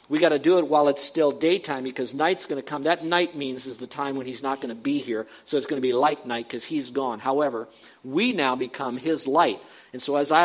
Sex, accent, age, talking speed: male, American, 50-69, 270 wpm